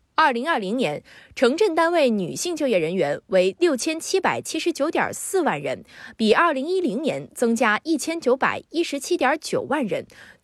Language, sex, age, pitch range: Chinese, female, 20-39, 210-320 Hz